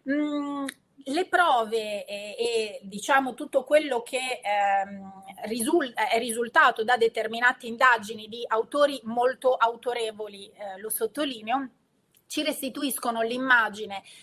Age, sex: 30-49, female